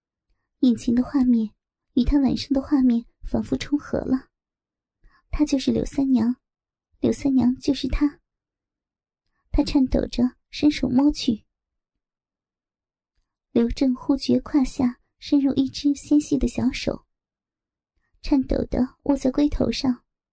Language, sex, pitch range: Chinese, male, 250-285 Hz